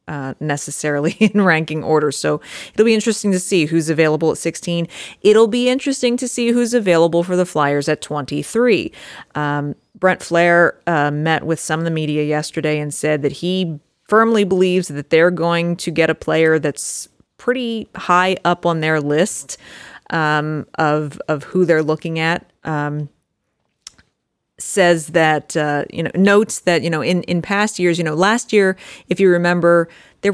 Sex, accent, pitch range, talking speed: female, American, 150-180 Hz, 175 wpm